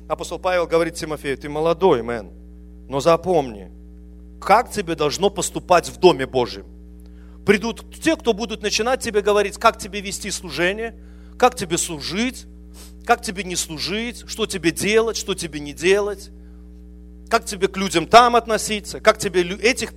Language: English